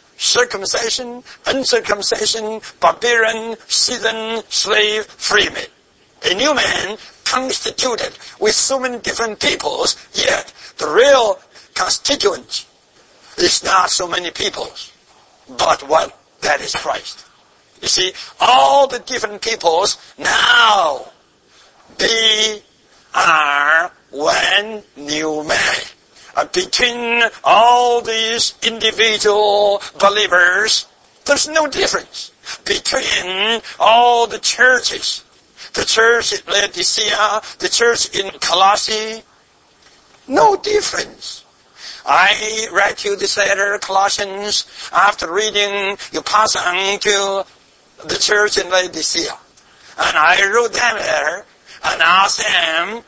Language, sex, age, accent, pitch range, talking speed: English, male, 60-79, American, 205-245 Hz, 100 wpm